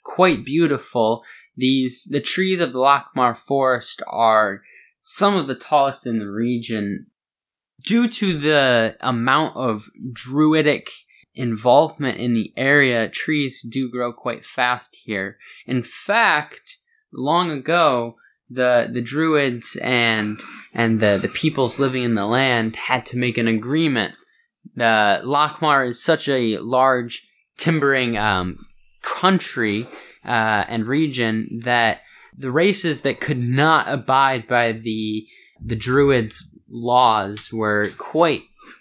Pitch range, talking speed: 115-145 Hz, 125 wpm